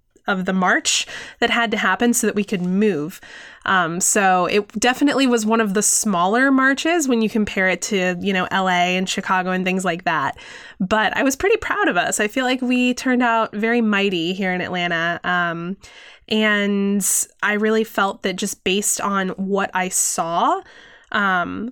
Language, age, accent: English, 20-39, American